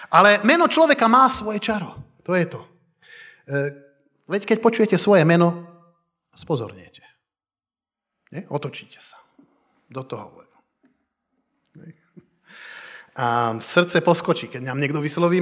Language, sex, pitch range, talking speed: Slovak, male, 135-215 Hz, 105 wpm